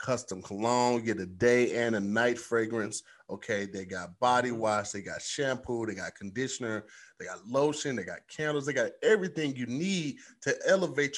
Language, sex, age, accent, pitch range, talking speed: English, male, 30-49, American, 125-205 Hz, 175 wpm